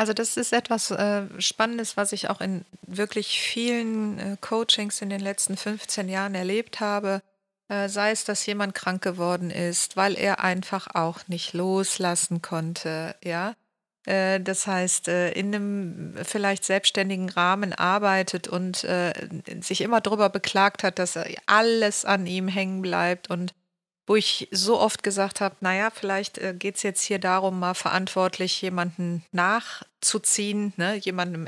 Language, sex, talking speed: German, female, 150 wpm